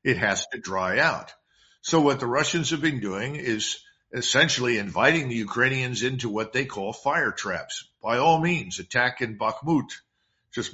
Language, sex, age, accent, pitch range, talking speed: English, male, 50-69, American, 115-140 Hz, 170 wpm